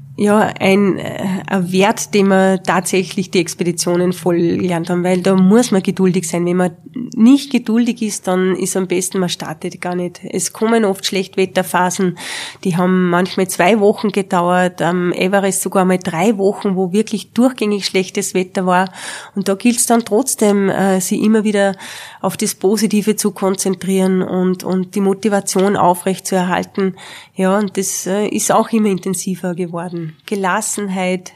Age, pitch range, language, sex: 20-39, 180-200 Hz, German, female